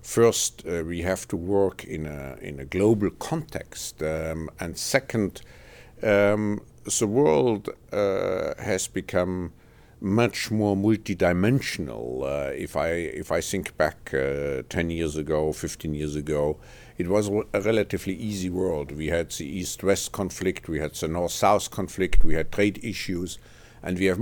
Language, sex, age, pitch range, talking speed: English, male, 50-69, 80-105 Hz, 155 wpm